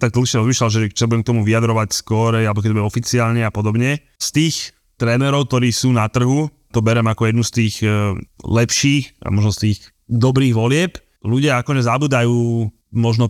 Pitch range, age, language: 105-120 Hz, 20-39, Slovak